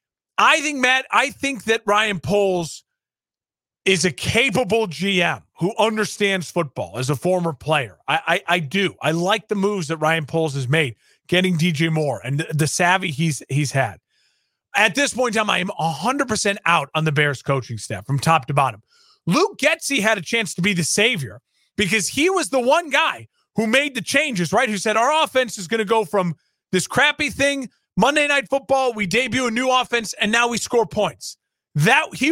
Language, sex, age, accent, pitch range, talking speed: English, male, 40-59, American, 175-240 Hz, 195 wpm